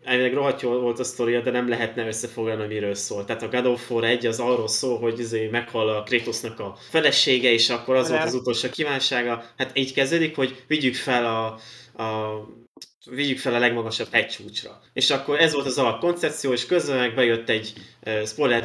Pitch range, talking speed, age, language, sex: 110-125 Hz, 195 wpm, 20-39, Hungarian, male